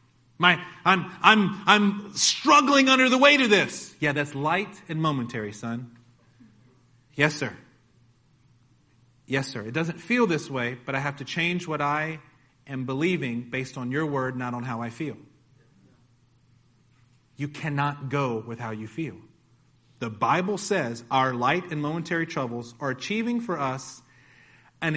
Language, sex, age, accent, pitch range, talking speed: English, male, 30-49, American, 130-200 Hz, 150 wpm